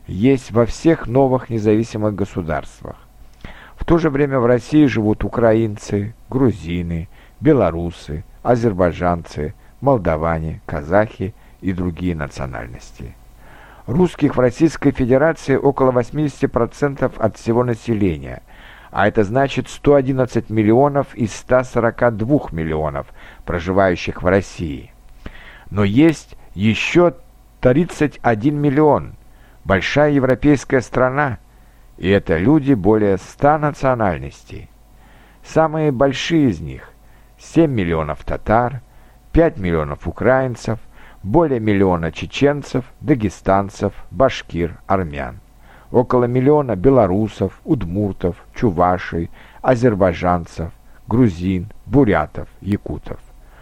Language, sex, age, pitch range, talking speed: Russian, male, 50-69, 95-135 Hz, 90 wpm